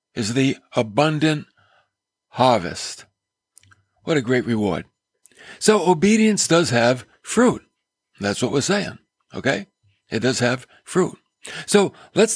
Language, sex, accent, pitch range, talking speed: English, male, American, 115-160 Hz, 115 wpm